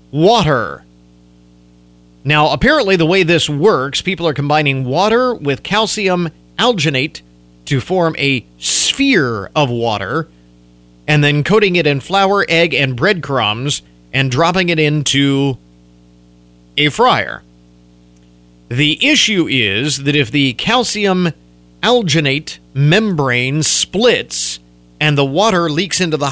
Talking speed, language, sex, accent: 115 wpm, English, male, American